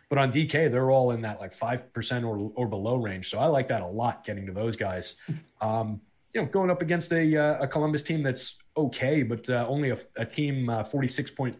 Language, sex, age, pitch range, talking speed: English, male, 30-49, 115-145 Hz, 240 wpm